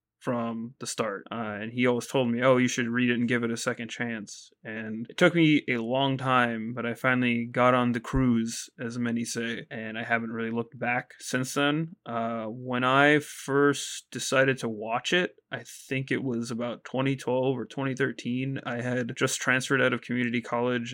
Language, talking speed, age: English, 200 wpm, 20-39